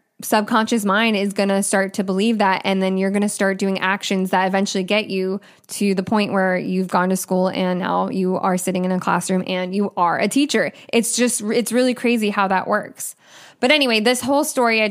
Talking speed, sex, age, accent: 225 wpm, female, 10-29, American